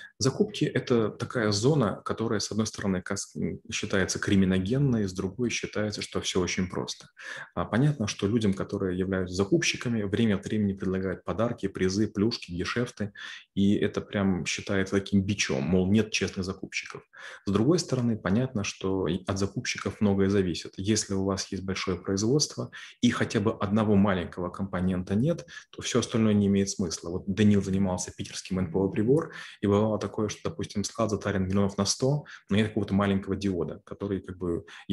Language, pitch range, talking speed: Russian, 95-110 Hz, 160 wpm